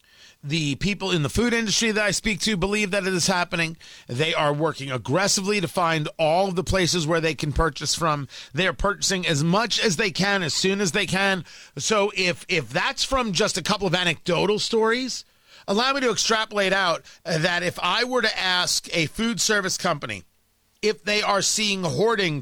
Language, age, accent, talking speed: English, 40-59, American, 195 wpm